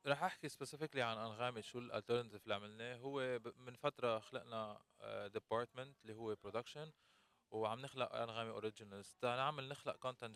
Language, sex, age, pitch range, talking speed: Arabic, male, 20-39, 110-130 Hz, 145 wpm